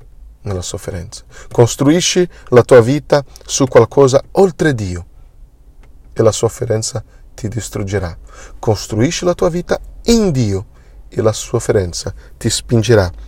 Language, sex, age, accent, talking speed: Italian, male, 40-59, native, 115 wpm